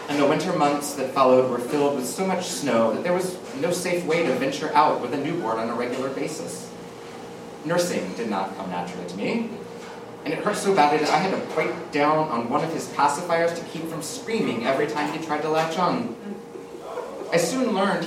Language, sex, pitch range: English, male, 135-185 Hz